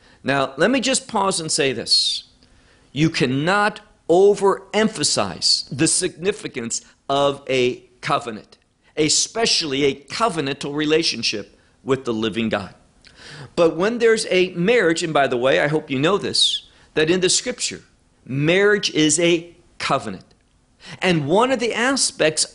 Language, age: English, 50-69